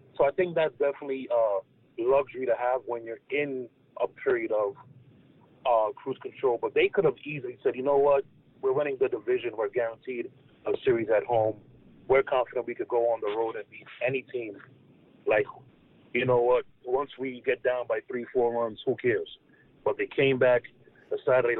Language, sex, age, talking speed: English, male, 30-49, 190 wpm